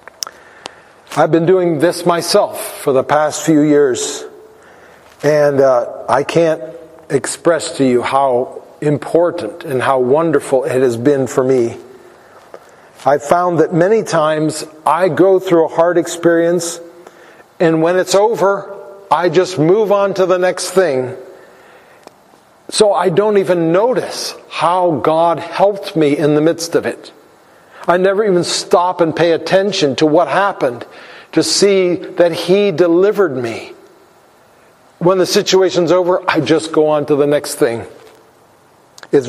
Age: 40-59